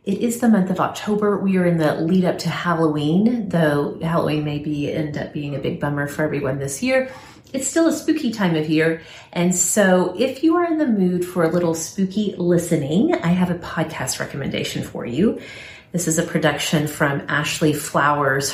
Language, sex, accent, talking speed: English, female, American, 200 wpm